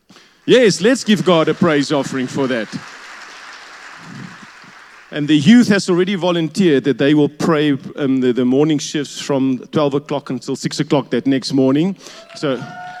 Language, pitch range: English, 135-195 Hz